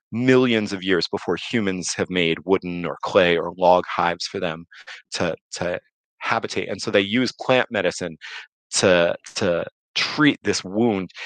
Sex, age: male, 30-49